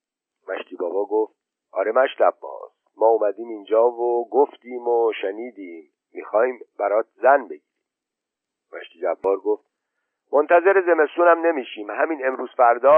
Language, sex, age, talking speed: Persian, male, 50-69, 115 wpm